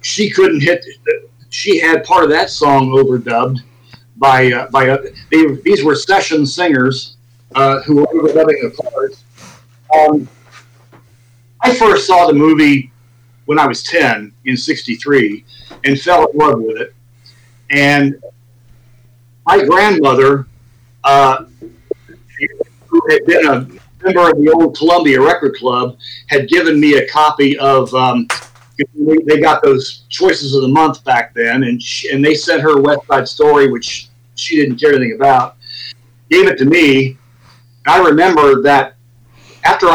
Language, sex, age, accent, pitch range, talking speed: English, male, 50-69, American, 120-155 Hz, 145 wpm